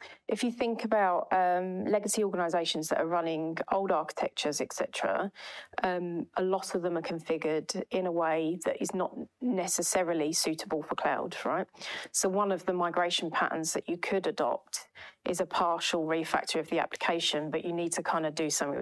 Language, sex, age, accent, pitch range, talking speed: English, female, 40-59, British, 165-190 Hz, 180 wpm